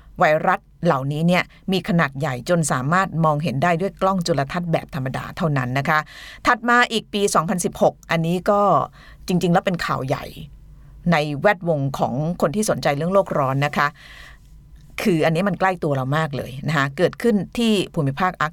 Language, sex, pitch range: Thai, female, 145-195 Hz